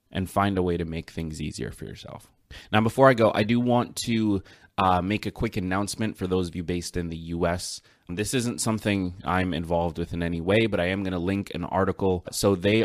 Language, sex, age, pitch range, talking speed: English, male, 20-39, 85-105 Hz, 235 wpm